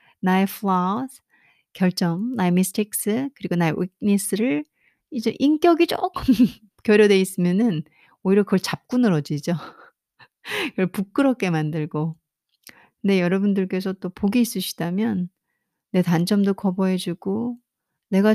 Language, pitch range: Korean, 180-235 Hz